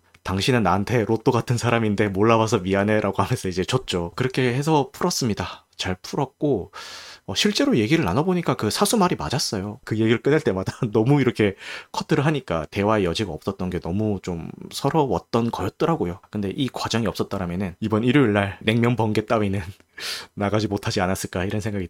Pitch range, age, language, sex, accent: 95-130 Hz, 30-49, Korean, male, native